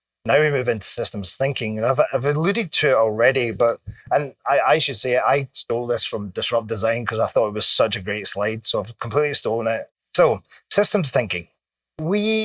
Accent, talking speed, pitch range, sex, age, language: British, 205 wpm, 110-140 Hz, male, 30-49, English